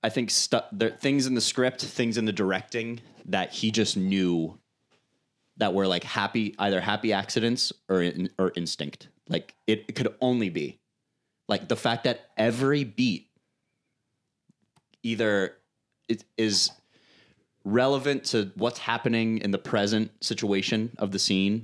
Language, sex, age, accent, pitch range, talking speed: English, male, 30-49, American, 95-120 Hz, 145 wpm